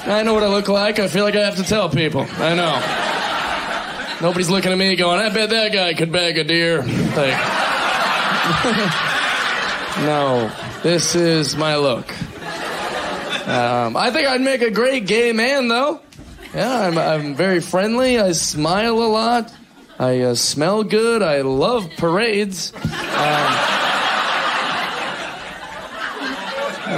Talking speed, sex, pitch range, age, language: 140 wpm, male, 150-210 Hz, 20-39, English